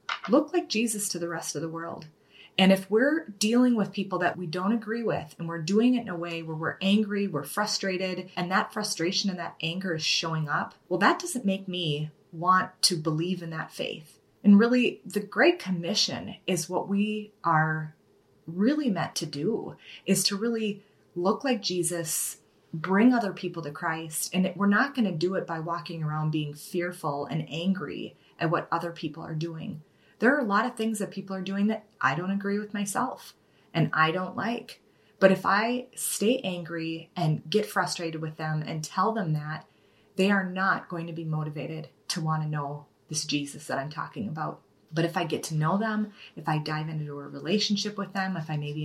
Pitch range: 160-210 Hz